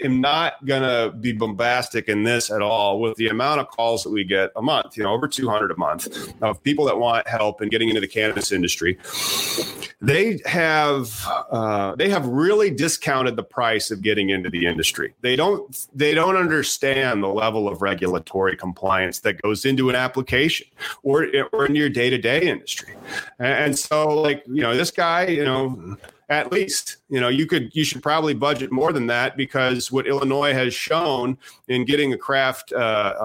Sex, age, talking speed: male, 30-49, 190 wpm